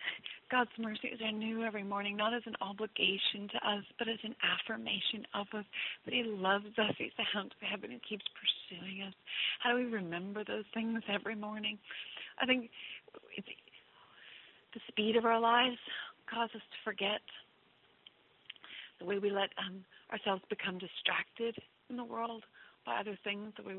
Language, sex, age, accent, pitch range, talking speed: English, female, 40-59, American, 195-225 Hz, 170 wpm